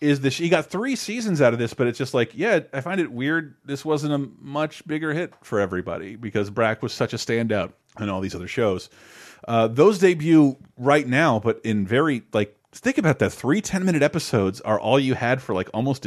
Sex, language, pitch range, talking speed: male, English, 100-135 Hz, 220 wpm